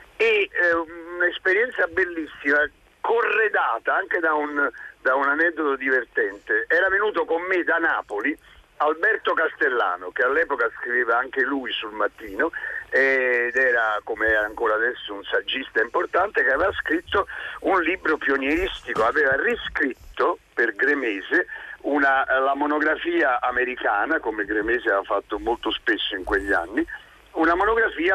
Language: Italian